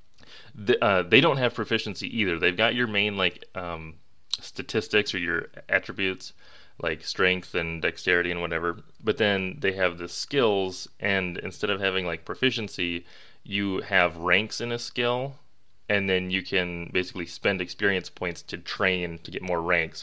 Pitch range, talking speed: 85-105 Hz, 160 wpm